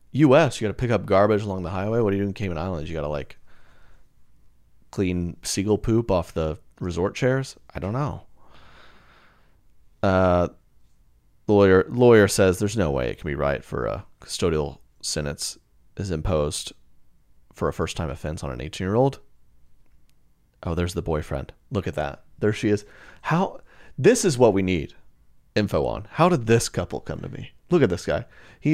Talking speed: 185 wpm